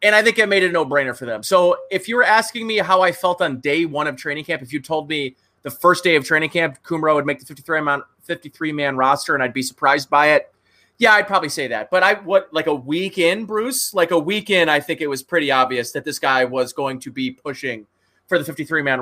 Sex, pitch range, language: male, 140-195 Hz, English